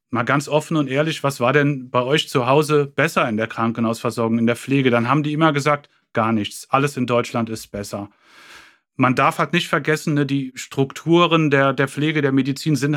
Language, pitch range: German, 125-150 Hz